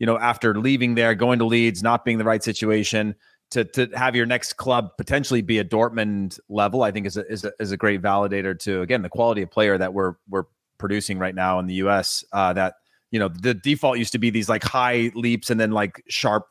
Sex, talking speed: male, 240 wpm